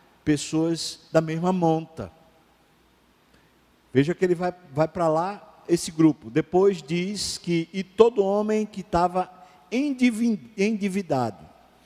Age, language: 50-69, Portuguese